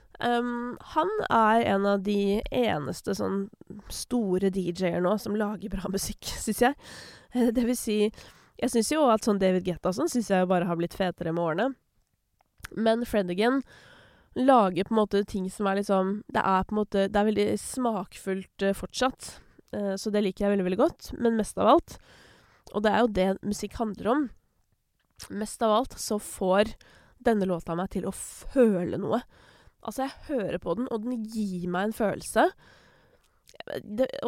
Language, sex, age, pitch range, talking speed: English, female, 20-39, 190-240 Hz, 170 wpm